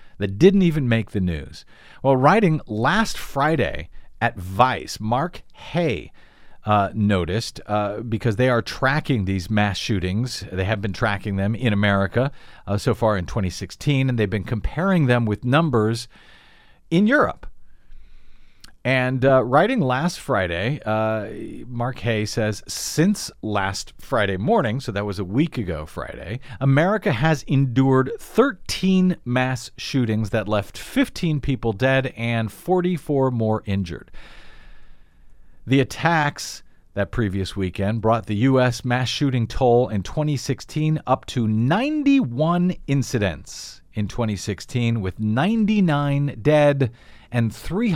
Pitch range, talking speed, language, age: 105-145 Hz, 130 wpm, English, 50-69